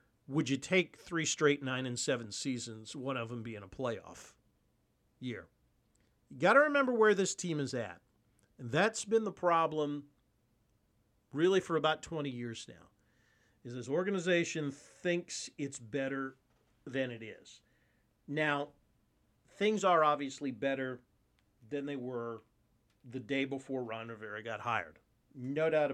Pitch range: 115-160 Hz